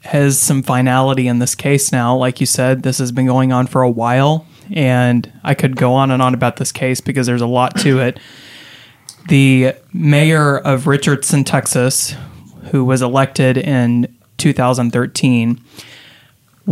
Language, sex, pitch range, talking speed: English, male, 125-140 Hz, 160 wpm